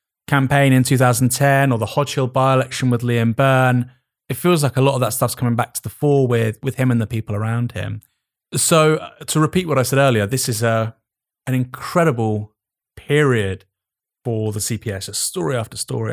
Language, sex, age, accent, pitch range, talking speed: English, male, 30-49, British, 105-135 Hz, 195 wpm